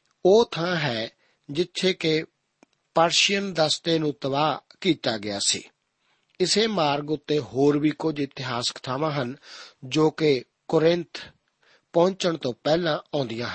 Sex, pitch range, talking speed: male, 140-170 Hz, 125 wpm